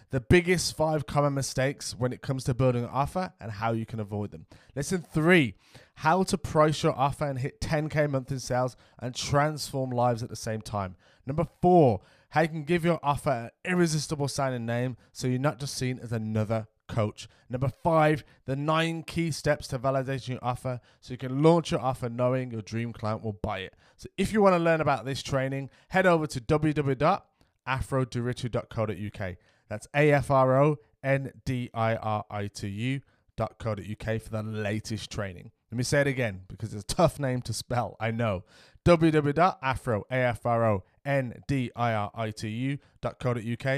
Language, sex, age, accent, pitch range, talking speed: English, male, 20-39, British, 110-145 Hz, 160 wpm